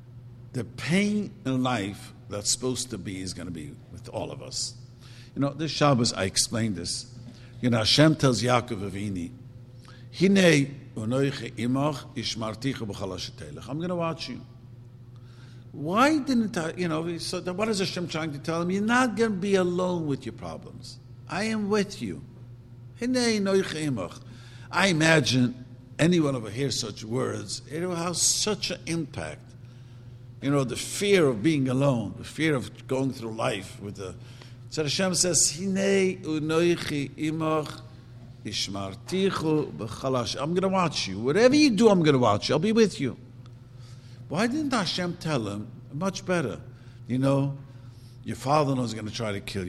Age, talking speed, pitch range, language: 50-69, 155 wpm, 120-160 Hz, English